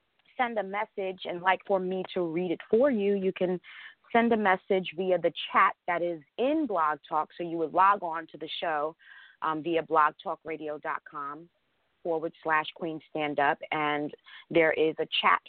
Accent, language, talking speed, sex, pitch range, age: American, English, 175 wpm, female, 155-205 Hz, 30-49